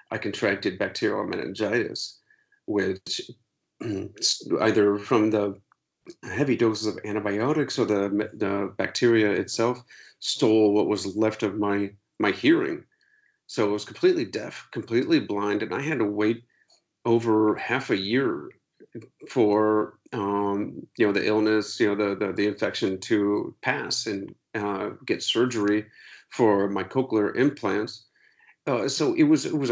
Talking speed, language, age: 140 wpm, English, 40-59